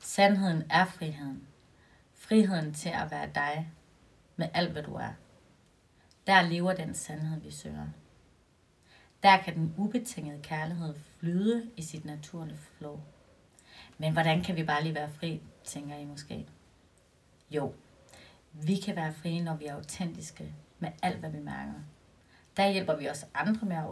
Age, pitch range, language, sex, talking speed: 30-49, 150-185 Hz, Danish, female, 155 wpm